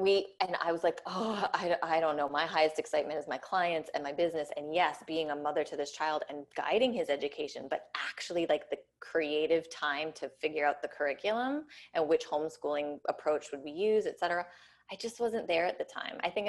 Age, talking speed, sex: 20-39, 215 wpm, female